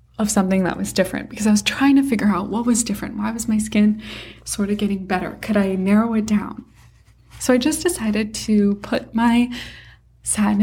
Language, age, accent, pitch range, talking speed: English, 20-39, American, 185-220 Hz, 205 wpm